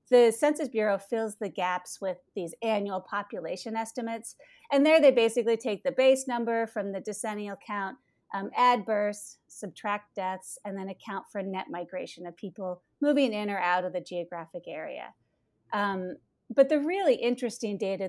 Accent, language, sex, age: American, English, female, 30-49